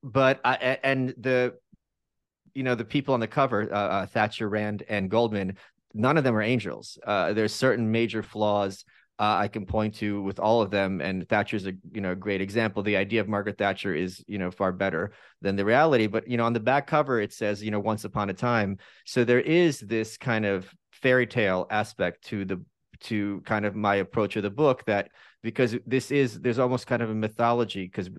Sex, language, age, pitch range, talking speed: male, English, 30-49, 100-115 Hz, 215 wpm